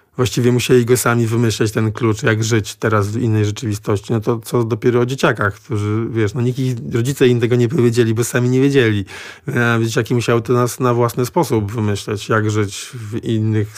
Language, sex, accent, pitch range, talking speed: Polish, male, native, 110-125 Hz, 195 wpm